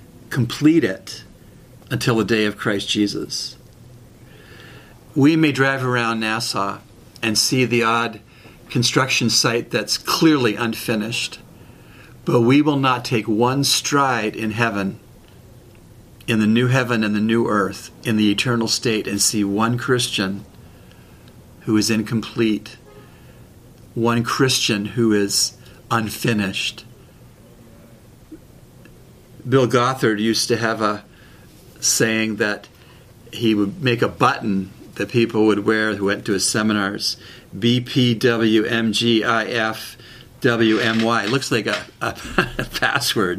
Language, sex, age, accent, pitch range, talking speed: English, male, 50-69, American, 110-125 Hz, 115 wpm